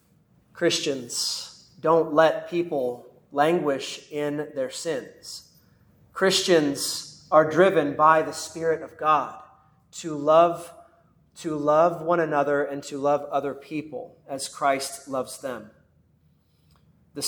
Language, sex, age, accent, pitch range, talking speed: English, male, 30-49, American, 150-170 Hz, 110 wpm